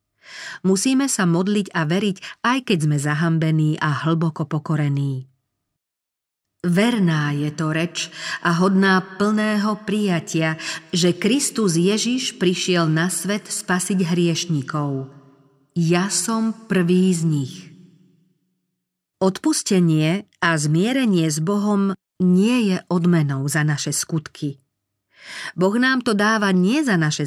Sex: female